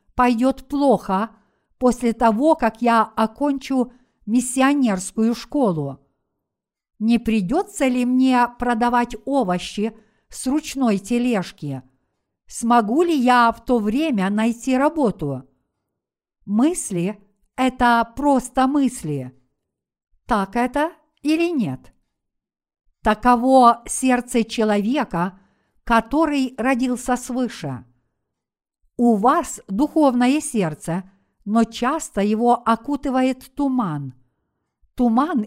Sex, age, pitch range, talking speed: female, 60-79, 215-255 Hz, 85 wpm